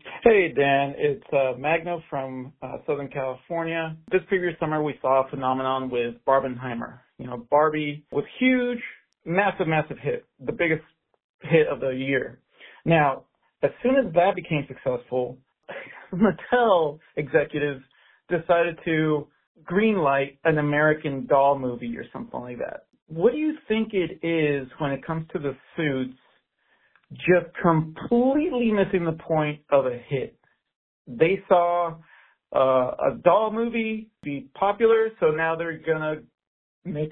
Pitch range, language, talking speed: 135-190 Hz, English, 140 wpm